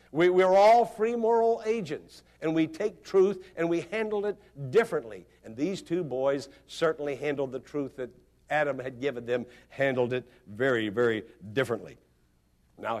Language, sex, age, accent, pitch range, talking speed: English, male, 60-79, American, 120-170 Hz, 150 wpm